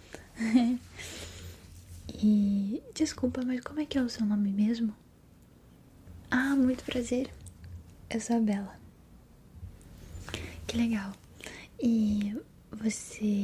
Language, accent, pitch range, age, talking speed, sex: Portuguese, Brazilian, 190-235 Hz, 10-29, 100 wpm, female